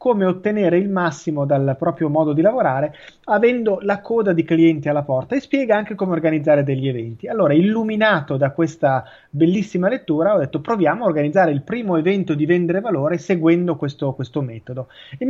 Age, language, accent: 30-49, Italian, native